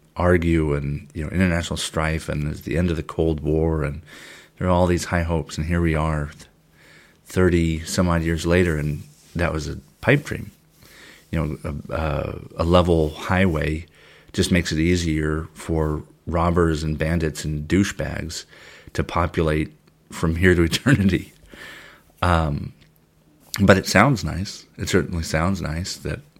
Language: English